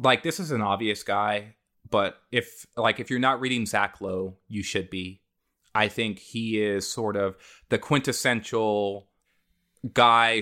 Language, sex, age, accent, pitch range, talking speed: English, male, 30-49, American, 105-120 Hz, 155 wpm